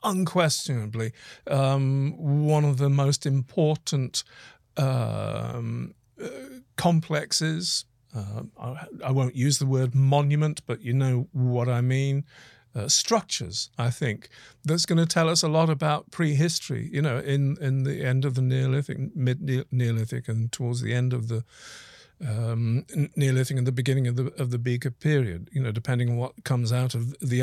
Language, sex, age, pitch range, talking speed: English, male, 50-69, 125-155 Hz, 160 wpm